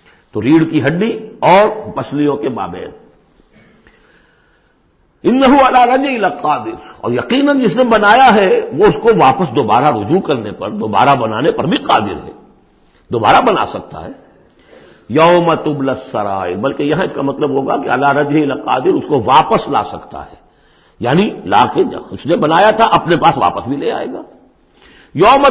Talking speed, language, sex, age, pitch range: 155 wpm, Urdu, male, 60-79, 140-210 Hz